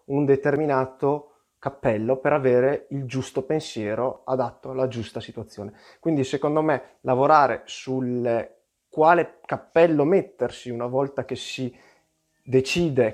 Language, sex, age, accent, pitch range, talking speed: Italian, male, 20-39, native, 115-140 Hz, 115 wpm